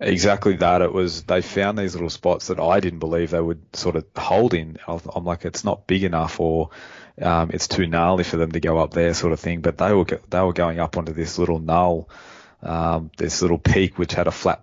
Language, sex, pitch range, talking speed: English, male, 85-90 Hz, 240 wpm